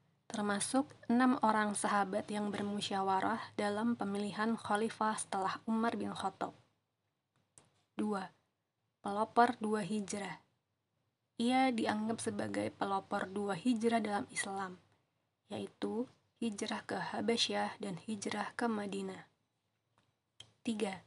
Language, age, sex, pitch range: Indonesian, 20-39, female, 190-225 Hz